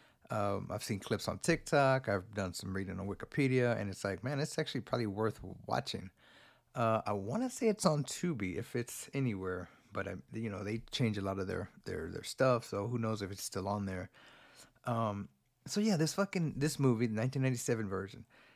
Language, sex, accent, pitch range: English, male, American, 105-130 Hz